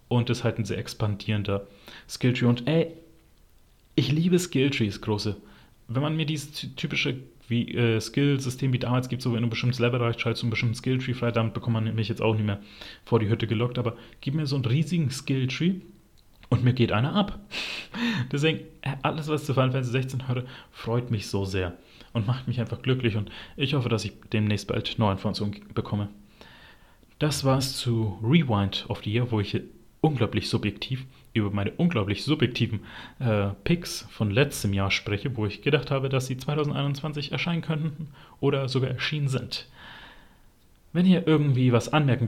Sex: male